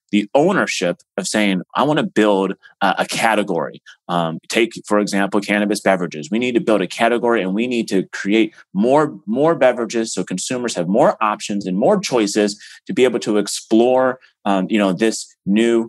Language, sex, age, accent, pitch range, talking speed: English, male, 30-49, American, 95-115 Hz, 180 wpm